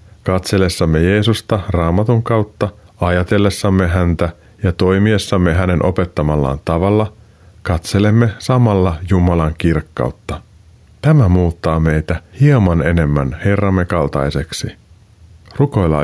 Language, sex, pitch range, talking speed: Finnish, male, 80-110 Hz, 85 wpm